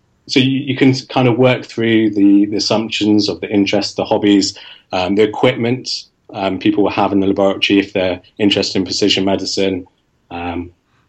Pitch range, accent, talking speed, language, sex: 95-110 Hz, British, 180 wpm, English, male